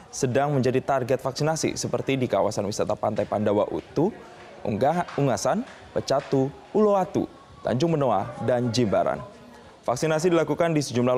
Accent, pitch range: native, 115-155 Hz